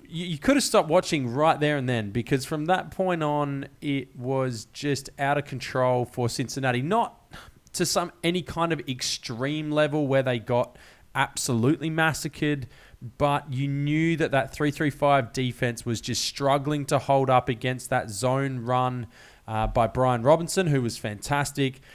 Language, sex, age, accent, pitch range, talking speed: English, male, 20-39, Australian, 125-145 Hz, 160 wpm